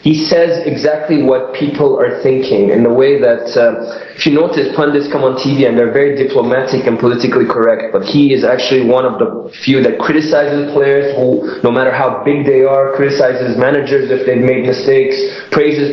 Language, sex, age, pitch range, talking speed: English, male, 20-39, 125-160 Hz, 190 wpm